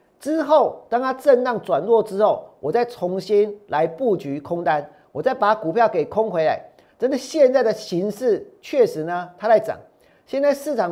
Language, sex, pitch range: Chinese, male, 195-275 Hz